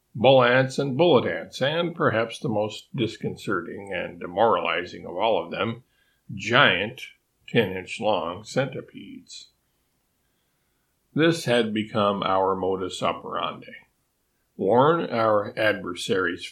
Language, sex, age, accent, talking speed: English, male, 50-69, American, 105 wpm